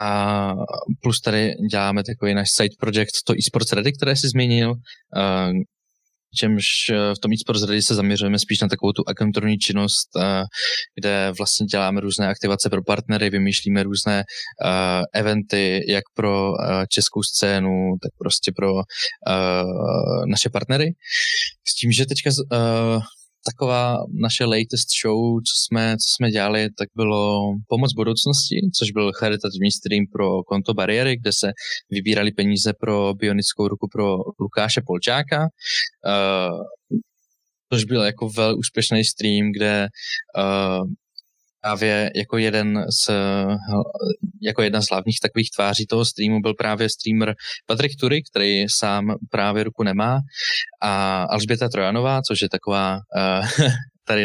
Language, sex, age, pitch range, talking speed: Slovak, male, 20-39, 100-120 Hz, 130 wpm